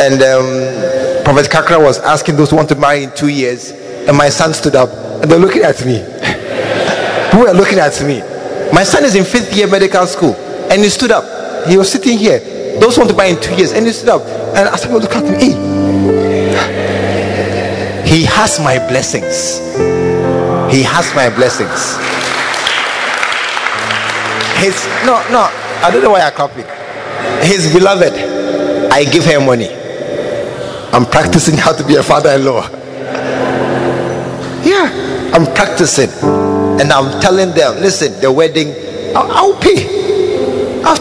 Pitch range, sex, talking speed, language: 135-225 Hz, male, 160 wpm, English